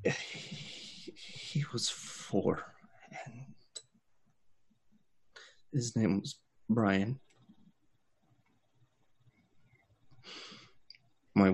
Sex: male